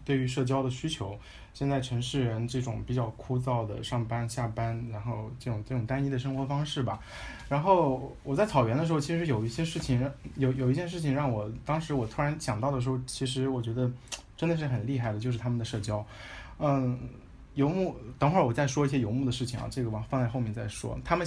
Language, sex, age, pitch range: Chinese, male, 20-39, 115-135 Hz